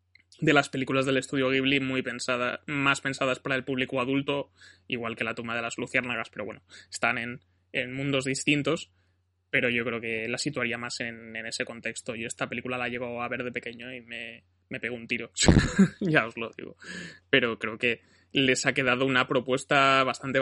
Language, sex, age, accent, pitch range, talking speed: Spanish, male, 20-39, Spanish, 115-135 Hz, 195 wpm